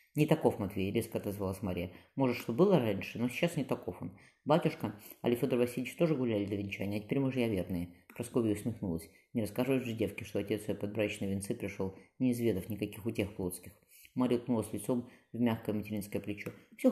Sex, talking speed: female, 190 wpm